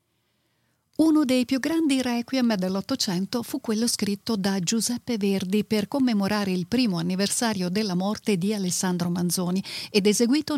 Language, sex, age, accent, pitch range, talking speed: Italian, female, 40-59, native, 180-235 Hz, 135 wpm